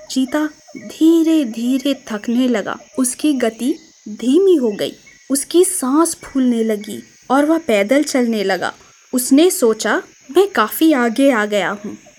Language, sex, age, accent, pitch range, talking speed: Hindi, female, 20-39, native, 235-310 Hz, 135 wpm